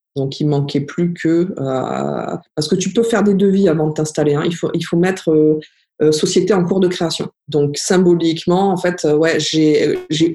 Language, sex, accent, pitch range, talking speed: French, female, French, 150-175 Hz, 205 wpm